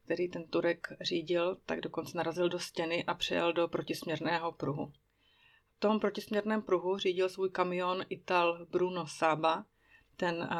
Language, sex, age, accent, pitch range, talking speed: Czech, female, 30-49, native, 165-185 Hz, 140 wpm